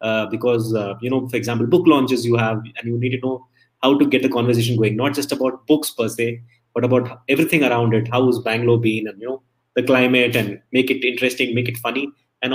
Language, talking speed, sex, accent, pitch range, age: English, 240 wpm, male, Indian, 120-145 Hz, 20-39